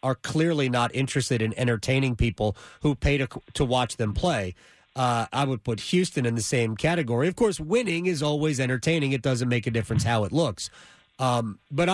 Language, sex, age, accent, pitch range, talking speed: English, male, 30-49, American, 135-225 Hz, 195 wpm